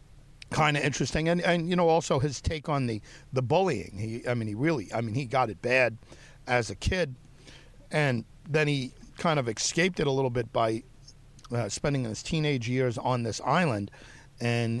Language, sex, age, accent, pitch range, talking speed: English, male, 50-69, American, 115-140 Hz, 195 wpm